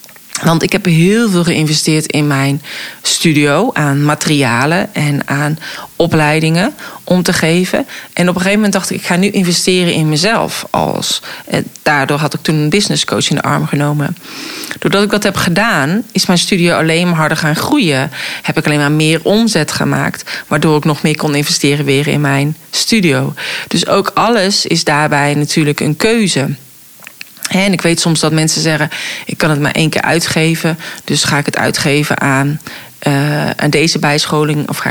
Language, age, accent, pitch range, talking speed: Dutch, 40-59, Dutch, 150-185 Hz, 180 wpm